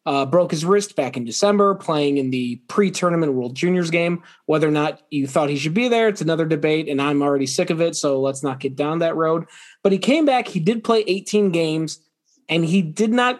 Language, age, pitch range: English, 20-39, 145-190 Hz